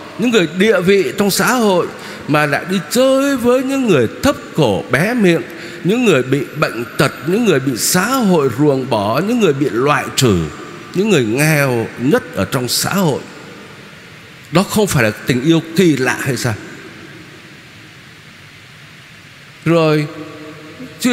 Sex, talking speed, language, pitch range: male, 155 wpm, Vietnamese, 160-235 Hz